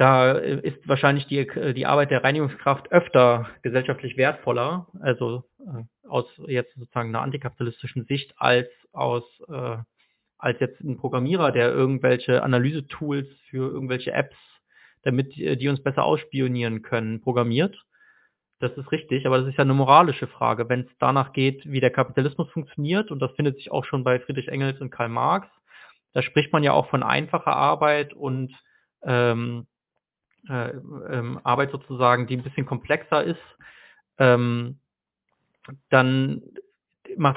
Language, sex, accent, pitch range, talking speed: German, male, German, 125-145 Hz, 140 wpm